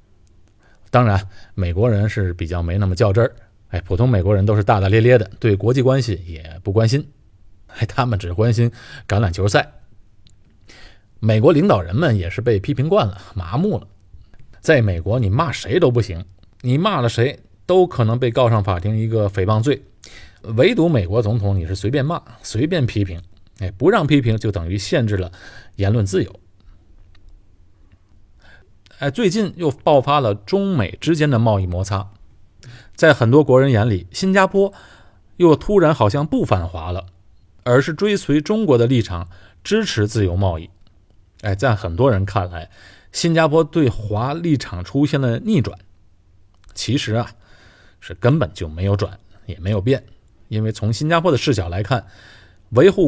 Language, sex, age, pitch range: Chinese, male, 20-39, 95-130 Hz